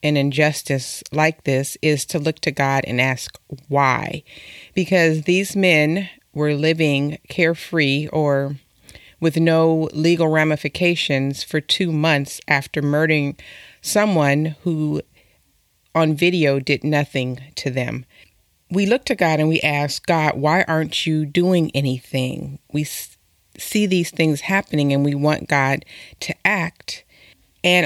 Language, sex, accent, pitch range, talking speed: English, female, American, 140-165 Hz, 135 wpm